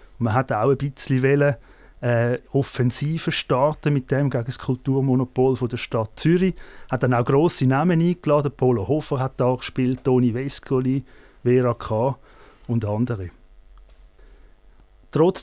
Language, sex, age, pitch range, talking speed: German, male, 30-49, 125-155 Hz, 135 wpm